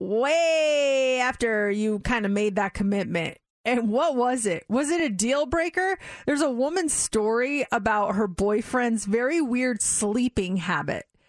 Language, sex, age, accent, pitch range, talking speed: English, female, 30-49, American, 215-275 Hz, 150 wpm